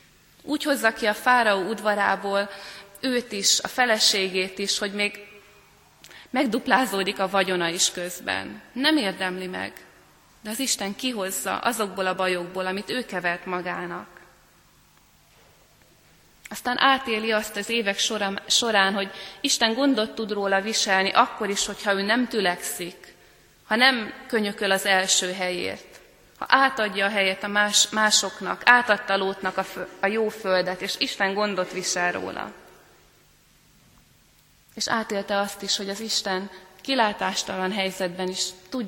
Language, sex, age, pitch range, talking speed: Hungarian, female, 20-39, 190-225 Hz, 130 wpm